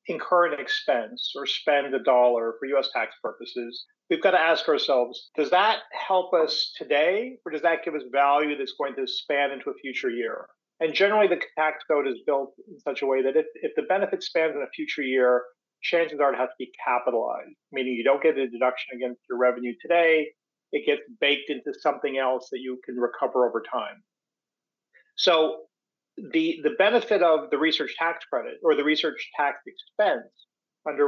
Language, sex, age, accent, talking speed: English, male, 40-59, American, 195 wpm